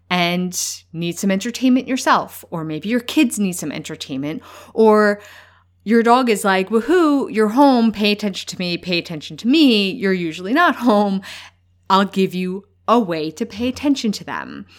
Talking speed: 170 wpm